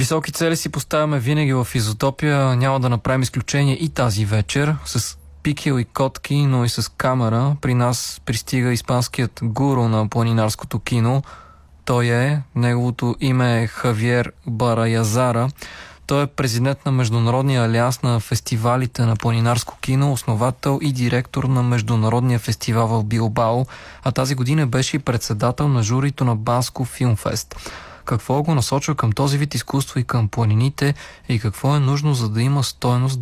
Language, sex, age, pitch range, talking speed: Bulgarian, male, 20-39, 115-135 Hz, 150 wpm